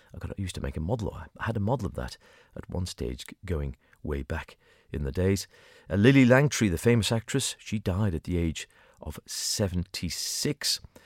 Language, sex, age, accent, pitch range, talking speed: English, male, 40-59, British, 90-130 Hz, 190 wpm